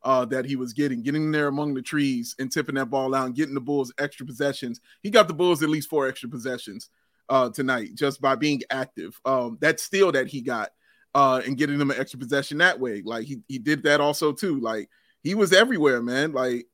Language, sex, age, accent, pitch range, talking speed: English, male, 30-49, American, 135-185 Hz, 230 wpm